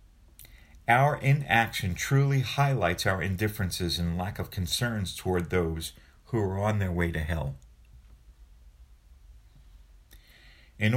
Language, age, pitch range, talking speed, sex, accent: English, 50-69, 80-110 Hz, 110 wpm, male, American